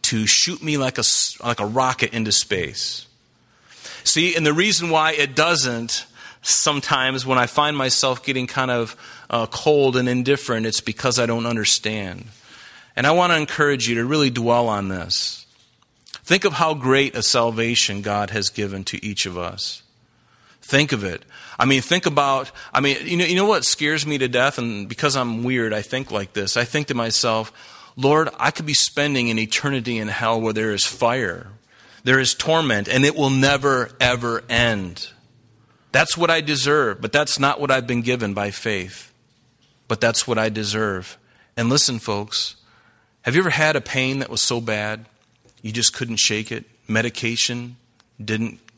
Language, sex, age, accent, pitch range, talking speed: English, male, 30-49, American, 110-135 Hz, 180 wpm